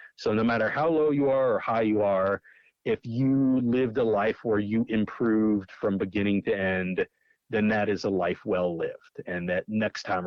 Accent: American